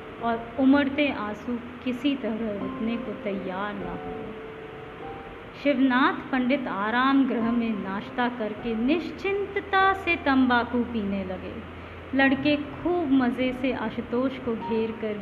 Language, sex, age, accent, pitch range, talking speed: Hindi, female, 20-39, native, 220-280 Hz, 120 wpm